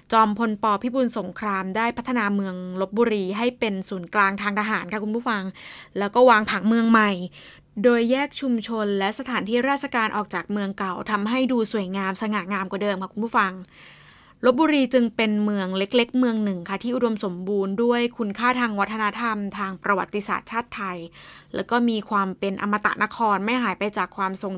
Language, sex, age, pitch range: Thai, female, 20-39, 195-235 Hz